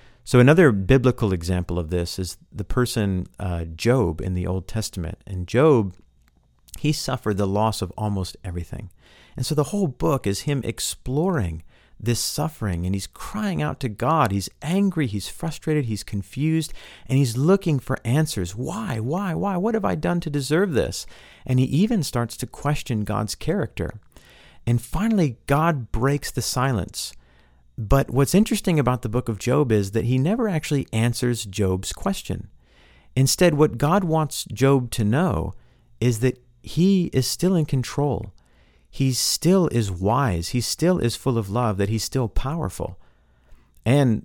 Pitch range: 100-145 Hz